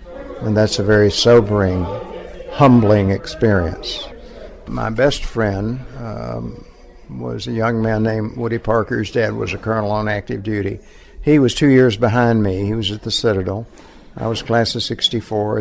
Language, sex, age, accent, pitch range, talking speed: English, male, 60-79, American, 105-125 Hz, 160 wpm